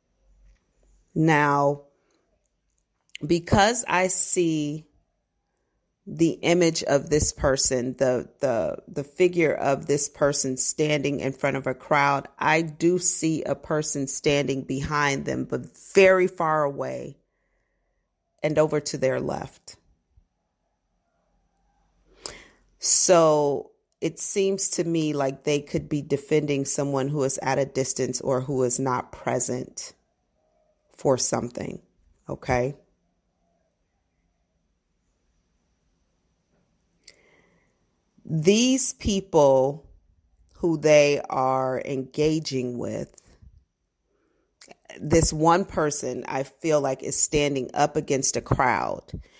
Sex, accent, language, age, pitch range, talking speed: female, American, English, 40-59, 130-160 Hz, 100 wpm